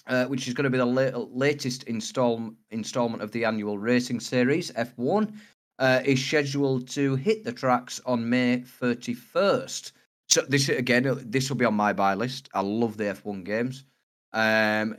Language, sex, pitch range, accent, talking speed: English, male, 100-125 Hz, British, 165 wpm